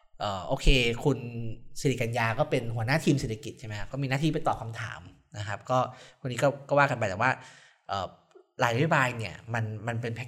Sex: male